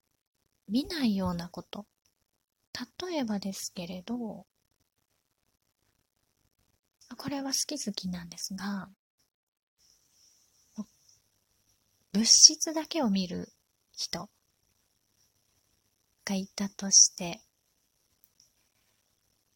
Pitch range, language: 170-235 Hz, Japanese